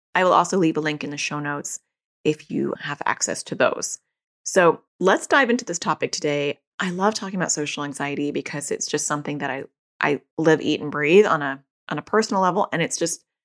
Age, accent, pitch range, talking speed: 30-49, American, 150-195 Hz, 220 wpm